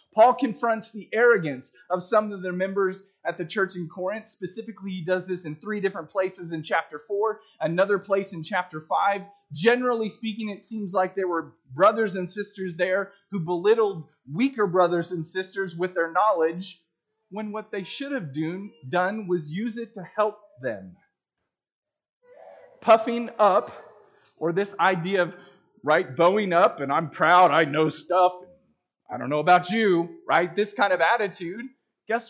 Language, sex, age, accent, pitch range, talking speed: English, male, 30-49, American, 170-220 Hz, 165 wpm